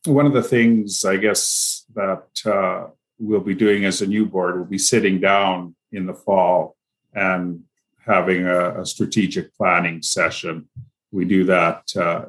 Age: 50-69